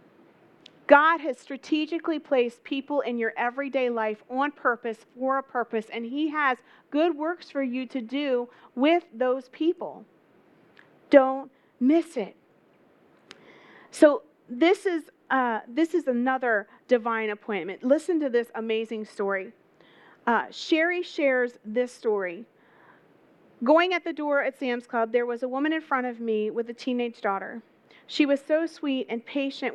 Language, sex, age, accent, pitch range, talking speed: English, female, 40-59, American, 230-285 Hz, 145 wpm